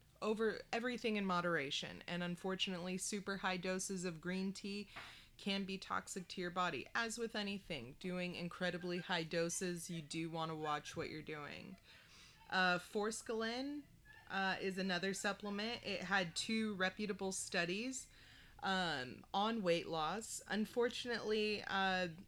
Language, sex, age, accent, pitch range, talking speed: English, female, 30-49, American, 170-200 Hz, 130 wpm